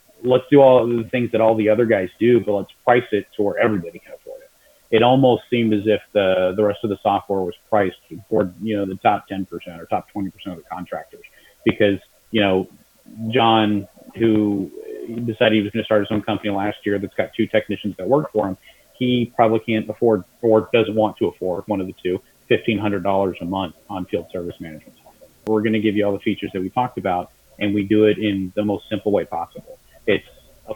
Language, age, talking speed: English, 30-49, 220 wpm